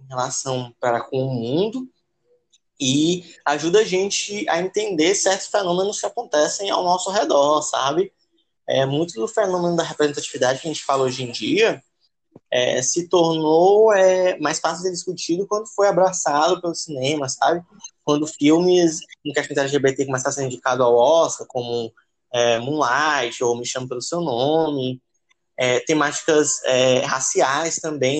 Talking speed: 155 wpm